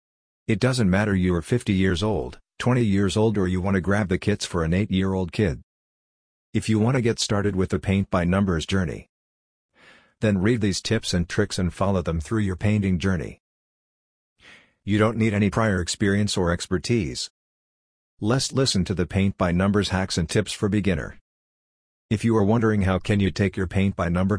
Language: English